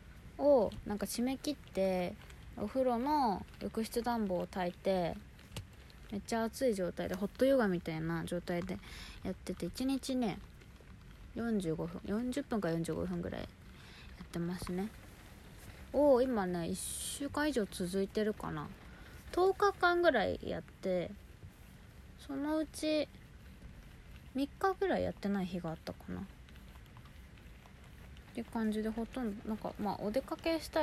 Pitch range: 180-265 Hz